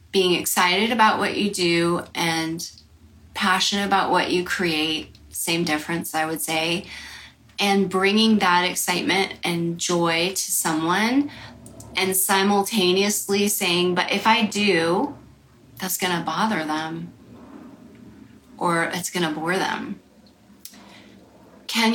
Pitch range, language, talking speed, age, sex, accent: 170-205 Hz, English, 115 wpm, 30-49, female, American